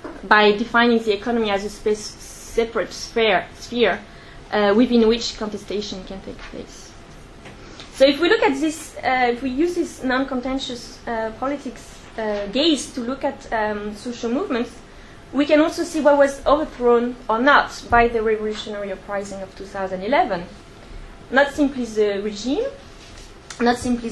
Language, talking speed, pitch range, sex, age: English, 145 wpm, 210-265 Hz, female, 20-39